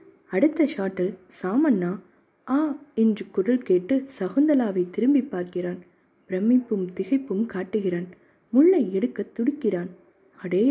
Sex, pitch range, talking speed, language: female, 185-270 Hz, 95 wpm, Tamil